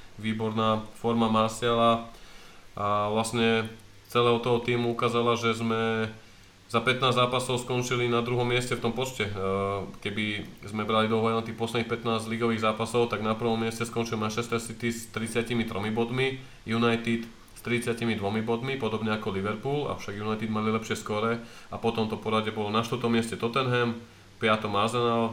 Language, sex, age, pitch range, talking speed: Slovak, male, 20-39, 110-120 Hz, 150 wpm